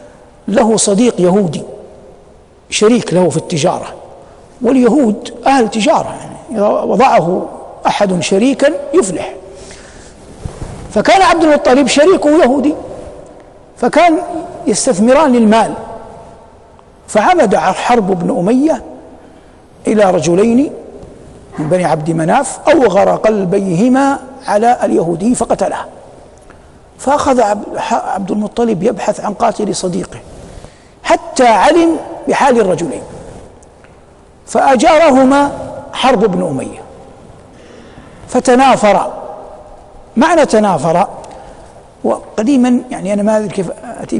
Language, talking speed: Arabic, 85 wpm